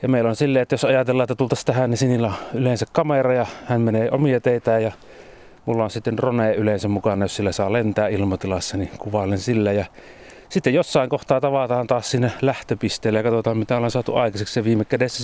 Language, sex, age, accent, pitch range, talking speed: Finnish, male, 30-49, native, 105-125 Hz, 205 wpm